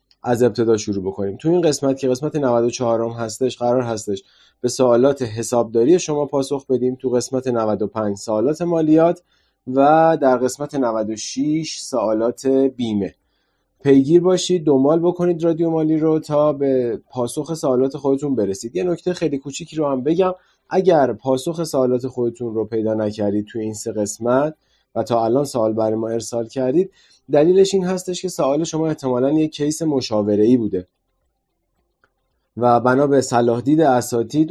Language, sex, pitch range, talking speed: Persian, male, 115-150 Hz, 150 wpm